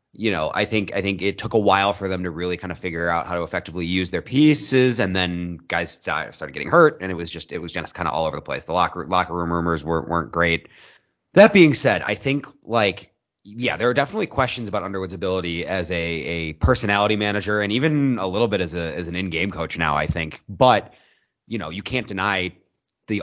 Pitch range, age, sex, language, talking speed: 85-105 Hz, 30-49, male, English, 235 wpm